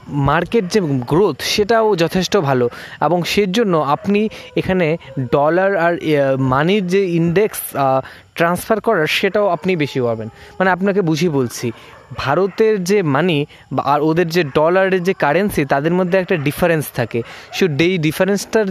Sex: male